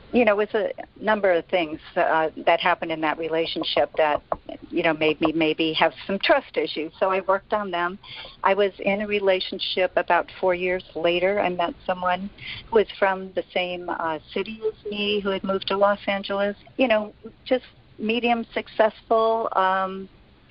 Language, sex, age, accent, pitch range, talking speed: English, female, 50-69, American, 165-205 Hz, 180 wpm